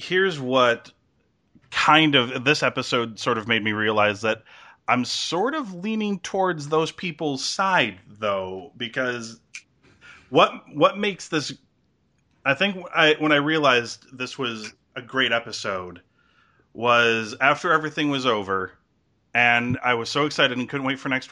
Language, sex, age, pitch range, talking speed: English, male, 30-49, 120-160 Hz, 145 wpm